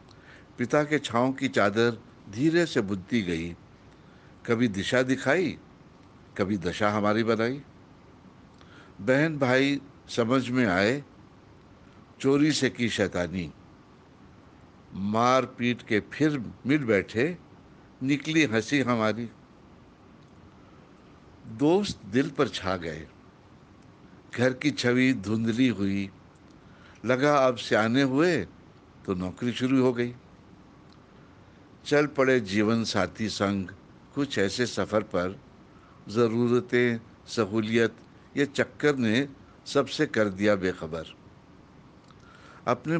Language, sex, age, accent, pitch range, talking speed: Hindi, male, 60-79, native, 100-130 Hz, 100 wpm